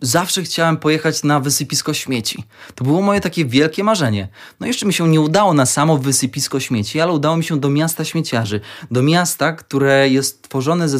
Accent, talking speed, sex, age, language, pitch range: native, 190 wpm, male, 20-39, Polish, 130-165 Hz